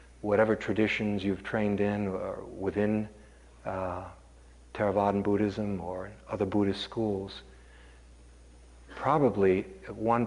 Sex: male